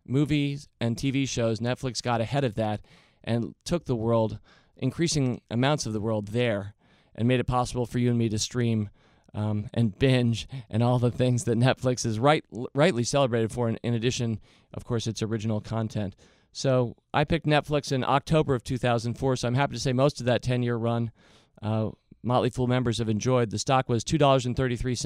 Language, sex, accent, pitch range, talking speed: English, male, American, 110-135 Hz, 180 wpm